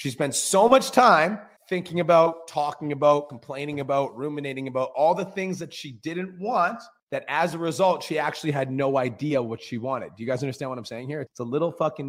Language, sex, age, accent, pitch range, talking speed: English, male, 30-49, American, 130-165 Hz, 220 wpm